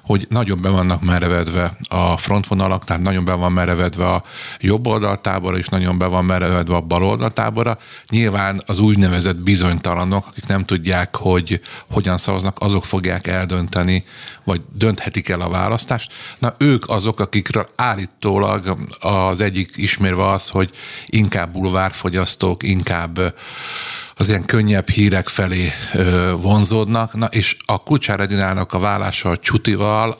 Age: 50-69